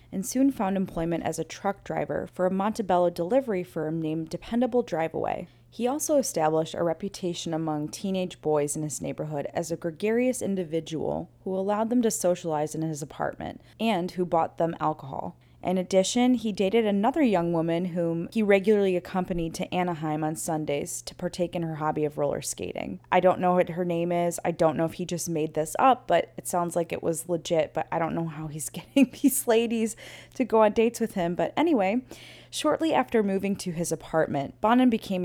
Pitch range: 160-210 Hz